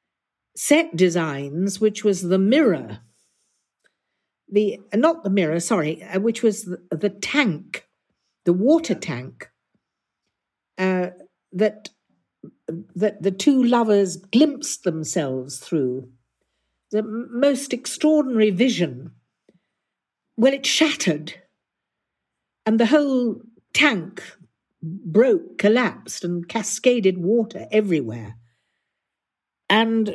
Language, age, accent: English, 60-79, British